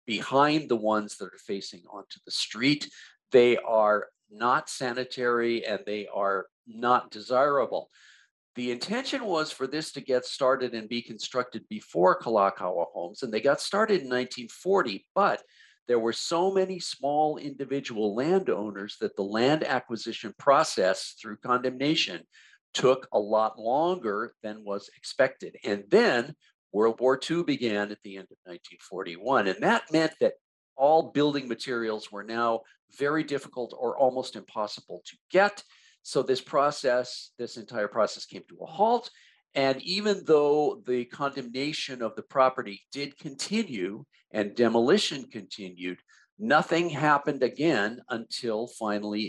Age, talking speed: 50-69, 140 wpm